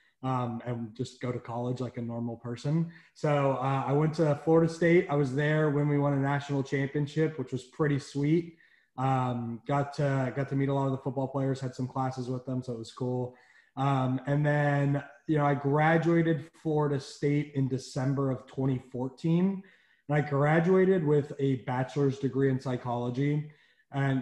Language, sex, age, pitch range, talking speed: English, male, 20-39, 130-150 Hz, 180 wpm